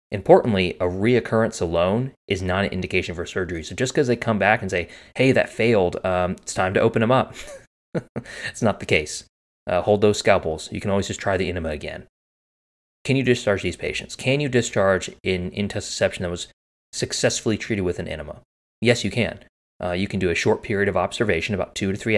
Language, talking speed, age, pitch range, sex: English, 210 wpm, 20-39, 85-105 Hz, male